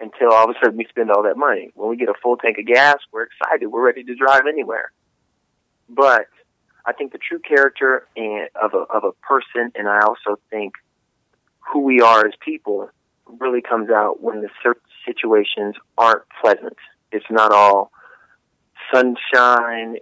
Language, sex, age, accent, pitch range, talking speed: English, male, 30-49, American, 105-125 Hz, 170 wpm